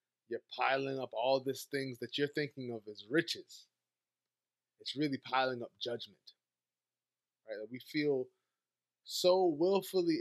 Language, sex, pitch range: English, male, 115-155 Hz